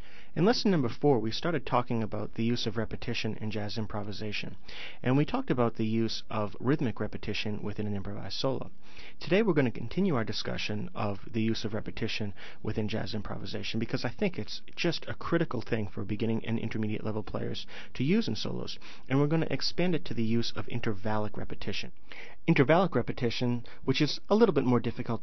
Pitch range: 105-125 Hz